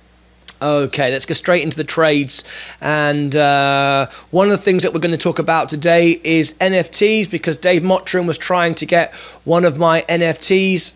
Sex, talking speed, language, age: male, 180 wpm, English, 30-49